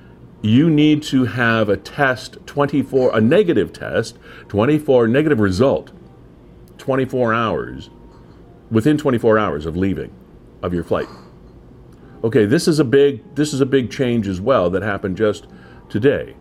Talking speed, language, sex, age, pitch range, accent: 145 wpm, English, male, 50-69, 85-115 Hz, American